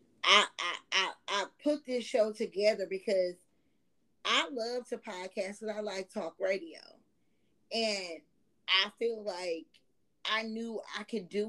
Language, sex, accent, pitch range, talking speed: English, female, American, 200-255 Hz, 140 wpm